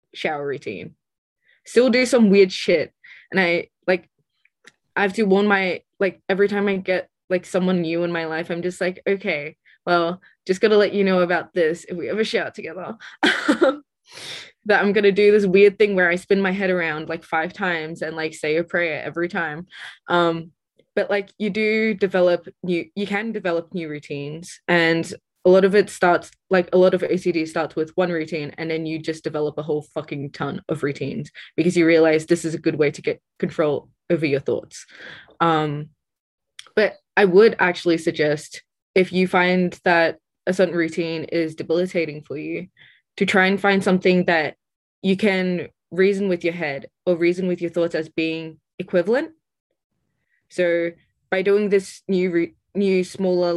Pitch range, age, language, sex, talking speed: 165-195 Hz, 20-39, English, female, 180 wpm